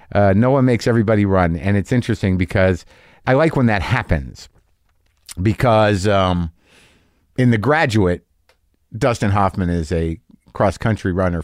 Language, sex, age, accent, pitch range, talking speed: English, male, 50-69, American, 90-110 Hz, 135 wpm